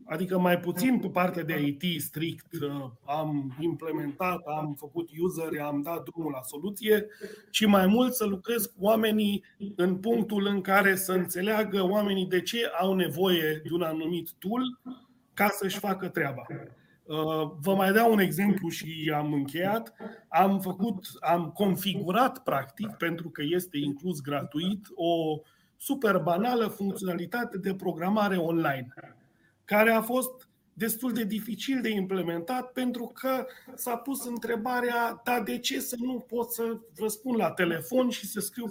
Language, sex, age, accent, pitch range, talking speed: Romanian, male, 30-49, native, 170-215 Hz, 145 wpm